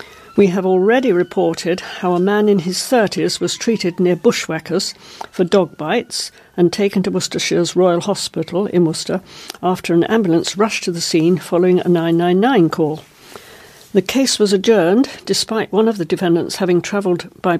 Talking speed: 165 wpm